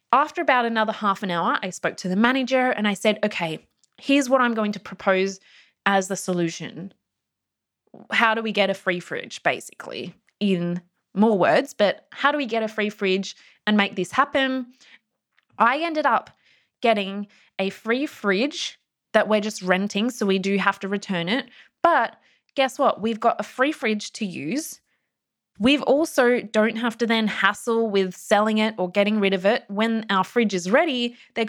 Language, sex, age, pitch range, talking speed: English, female, 20-39, 195-245 Hz, 185 wpm